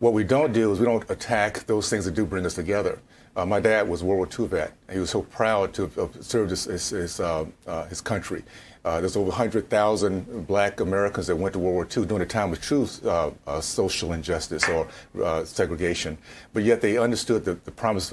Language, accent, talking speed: English, American, 230 wpm